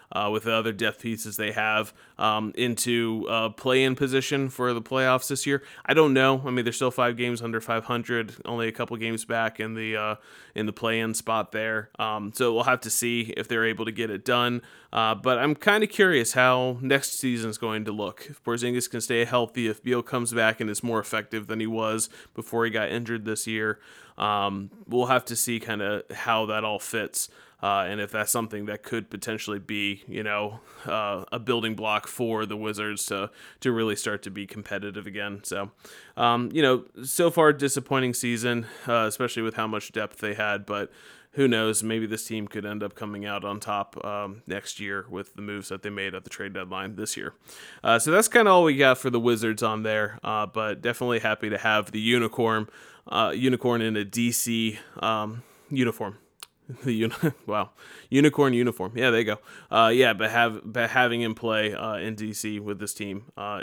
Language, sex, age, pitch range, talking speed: English, male, 30-49, 105-120 Hz, 210 wpm